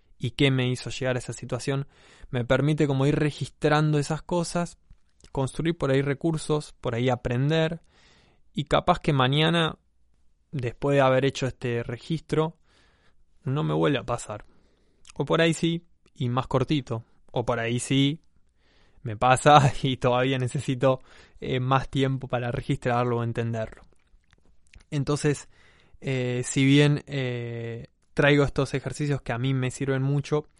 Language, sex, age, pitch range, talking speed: Spanish, male, 20-39, 120-140 Hz, 145 wpm